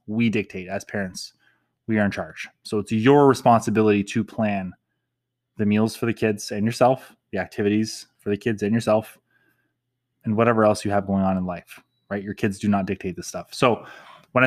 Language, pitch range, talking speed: English, 105-120 Hz, 195 wpm